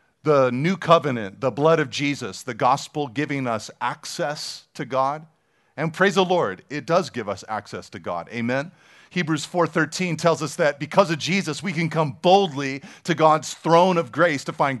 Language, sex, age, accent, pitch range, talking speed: English, male, 40-59, American, 120-175 Hz, 180 wpm